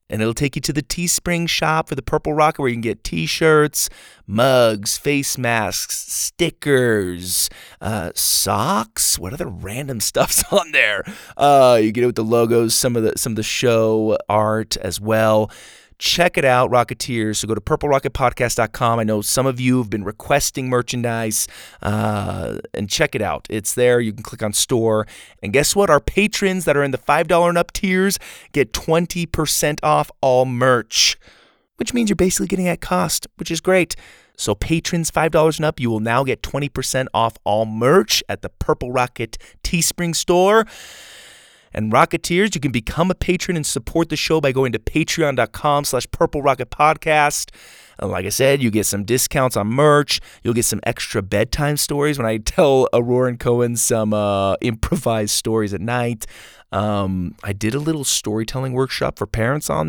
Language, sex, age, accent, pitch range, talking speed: English, male, 30-49, American, 110-155 Hz, 180 wpm